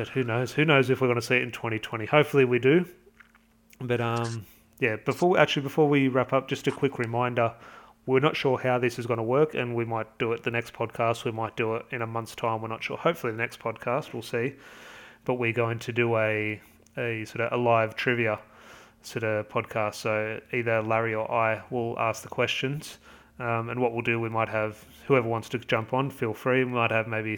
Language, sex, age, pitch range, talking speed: English, male, 30-49, 110-125 Hz, 230 wpm